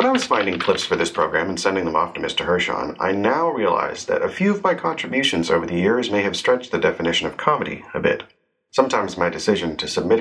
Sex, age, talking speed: male, 40-59, 240 wpm